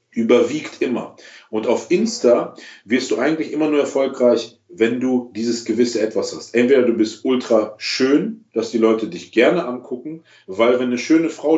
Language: German